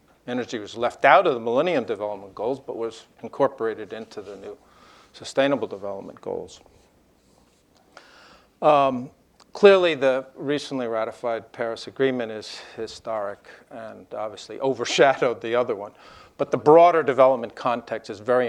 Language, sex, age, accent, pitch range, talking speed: English, male, 50-69, American, 115-140 Hz, 130 wpm